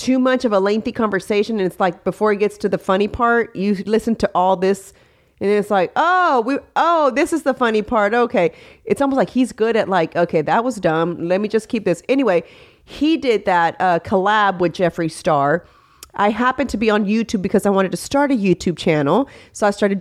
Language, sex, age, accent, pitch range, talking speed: English, female, 30-49, American, 185-255 Hz, 225 wpm